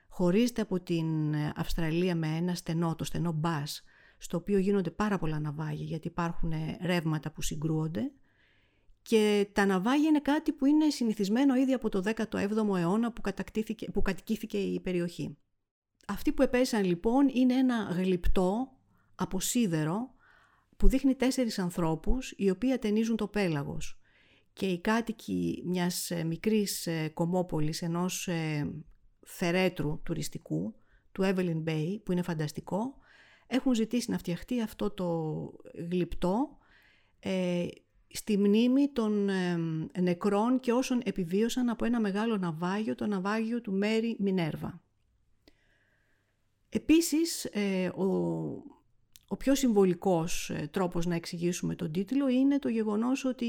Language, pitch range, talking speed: Greek, 165-225 Hz, 130 wpm